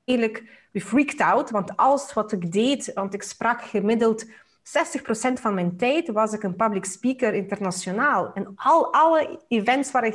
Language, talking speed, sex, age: Dutch, 165 wpm, female, 30-49